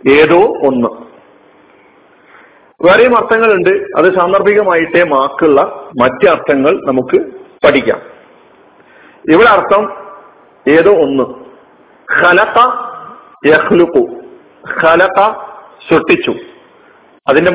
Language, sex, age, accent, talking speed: Malayalam, male, 50-69, native, 55 wpm